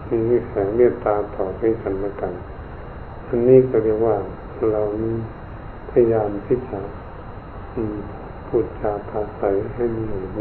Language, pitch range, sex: Thai, 105-120 Hz, male